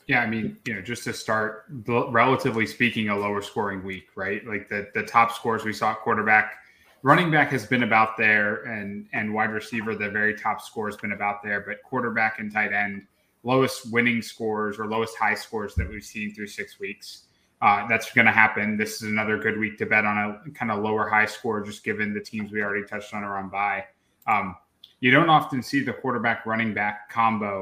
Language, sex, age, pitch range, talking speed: English, male, 20-39, 105-115 Hz, 215 wpm